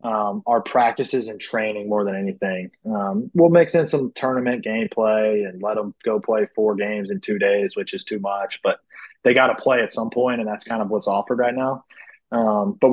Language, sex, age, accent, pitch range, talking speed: English, male, 20-39, American, 105-125 Hz, 220 wpm